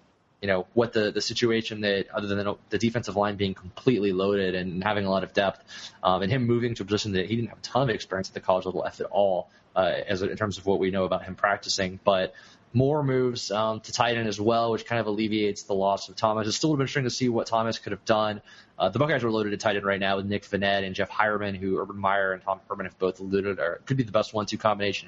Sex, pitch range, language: male, 95-115 Hz, English